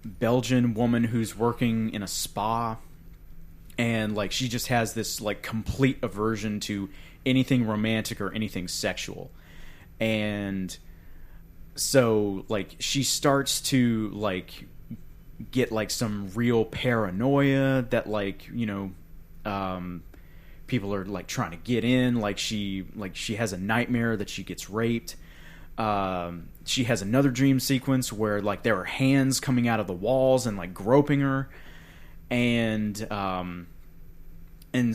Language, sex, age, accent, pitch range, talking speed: English, male, 30-49, American, 95-125 Hz, 140 wpm